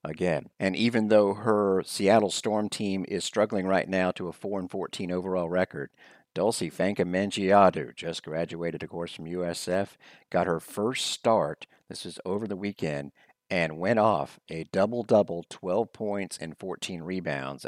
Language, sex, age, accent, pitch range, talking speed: English, male, 50-69, American, 85-105 Hz, 155 wpm